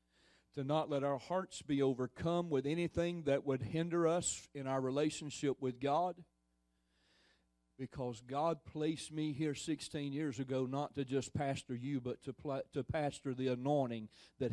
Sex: male